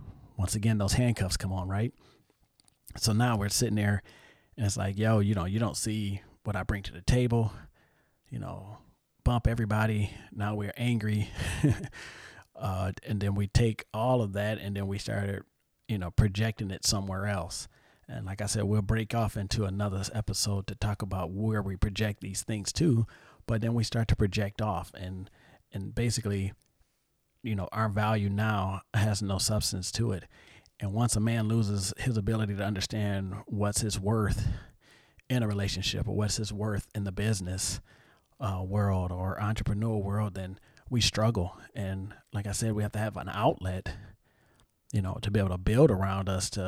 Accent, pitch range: American, 95-110 Hz